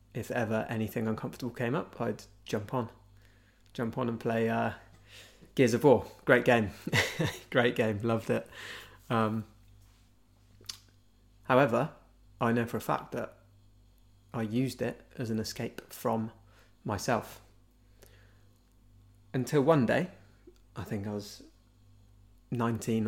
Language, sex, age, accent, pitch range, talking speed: English, male, 20-39, British, 100-120 Hz, 120 wpm